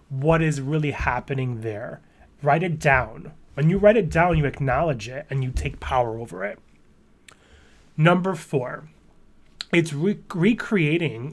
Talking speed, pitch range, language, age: 140 wpm, 135-175 Hz, English, 30-49